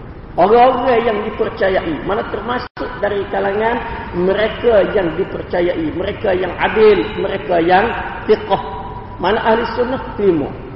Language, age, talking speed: Malay, 40-59, 110 wpm